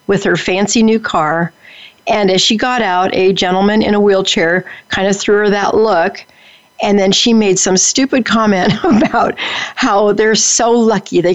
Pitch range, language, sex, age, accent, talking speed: 185-230 Hz, English, female, 50-69, American, 180 wpm